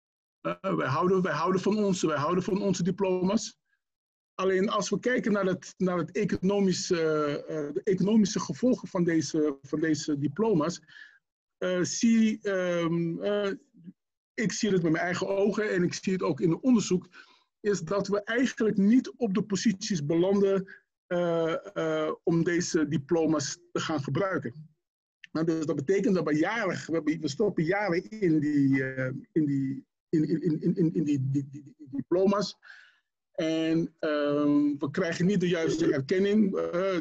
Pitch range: 160-200 Hz